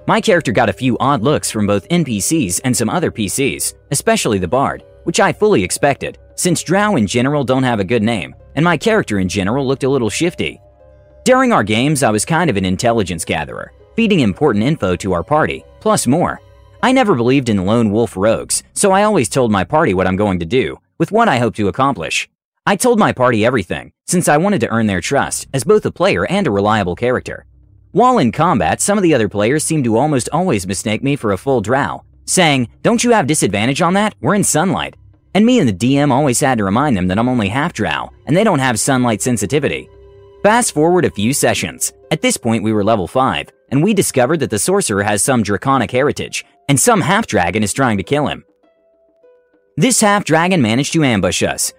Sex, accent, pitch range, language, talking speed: male, American, 105-175 Hz, English, 220 wpm